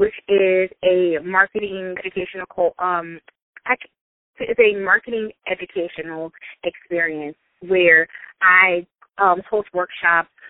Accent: American